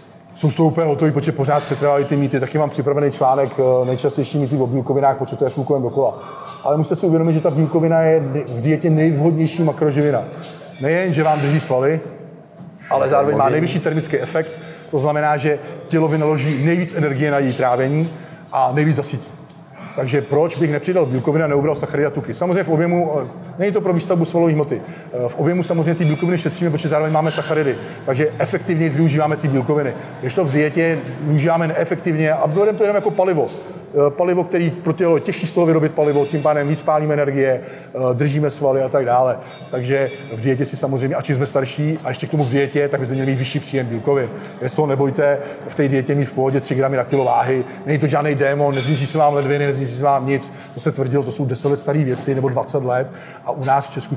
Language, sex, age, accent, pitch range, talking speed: Czech, male, 40-59, native, 140-160 Hz, 205 wpm